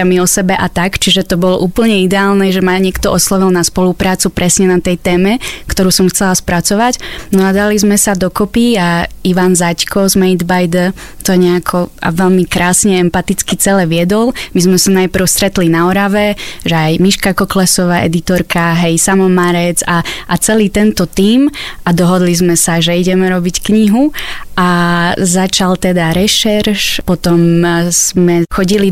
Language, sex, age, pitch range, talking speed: Slovak, female, 20-39, 175-195 Hz, 160 wpm